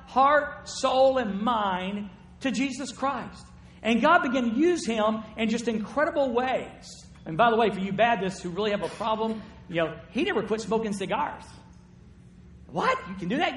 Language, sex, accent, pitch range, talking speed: English, male, American, 180-245 Hz, 180 wpm